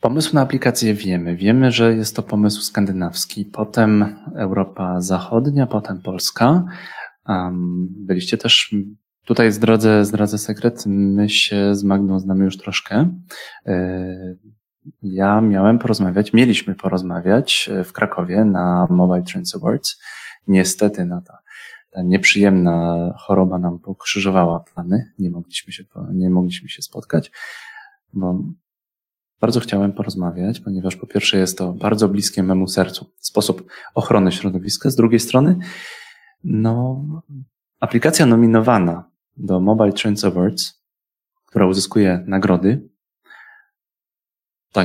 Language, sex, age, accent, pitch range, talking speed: Polish, male, 20-39, native, 95-120 Hz, 110 wpm